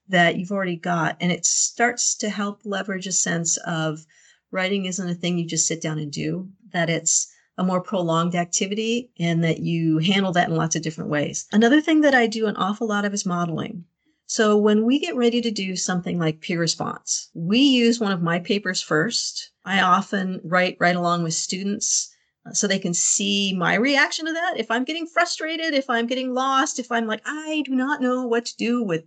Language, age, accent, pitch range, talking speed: English, 40-59, American, 170-245 Hz, 210 wpm